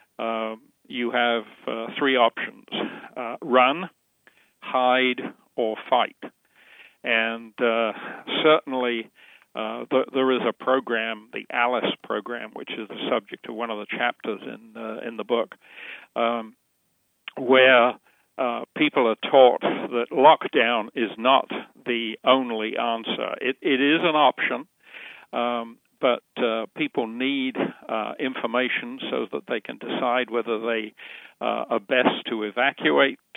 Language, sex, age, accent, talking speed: English, male, 50-69, American, 130 wpm